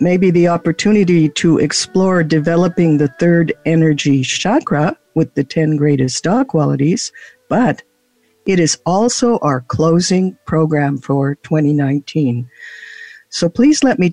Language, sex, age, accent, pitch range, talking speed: English, female, 60-79, American, 150-195 Hz, 125 wpm